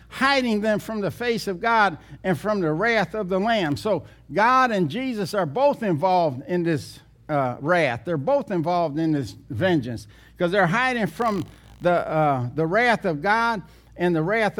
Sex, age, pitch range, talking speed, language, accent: male, 60-79, 160-220 Hz, 180 wpm, English, American